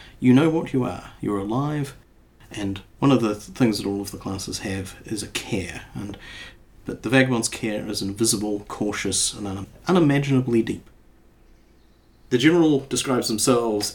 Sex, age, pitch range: male, 40-59, 100-125 Hz